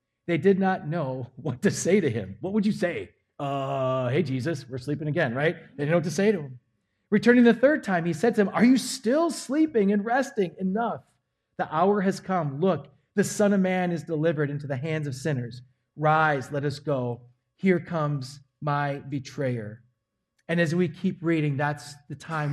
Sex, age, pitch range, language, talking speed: male, 30-49, 145-195 Hz, English, 200 wpm